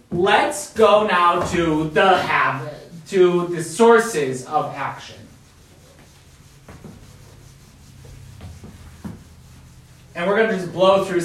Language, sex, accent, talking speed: English, male, American, 95 wpm